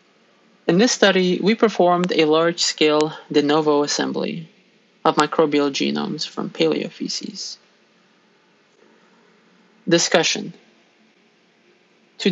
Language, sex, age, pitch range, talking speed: English, male, 20-39, 160-210 Hz, 85 wpm